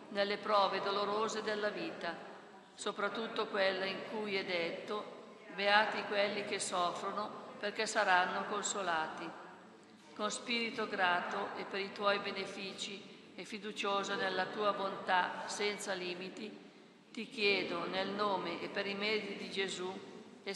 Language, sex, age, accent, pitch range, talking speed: Italian, female, 50-69, native, 195-210 Hz, 130 wpm